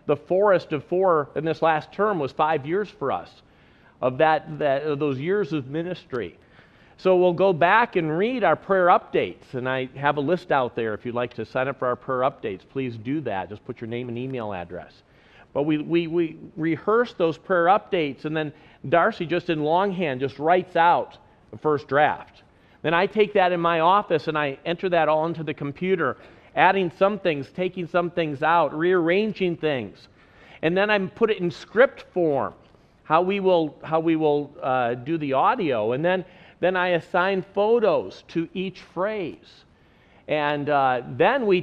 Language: English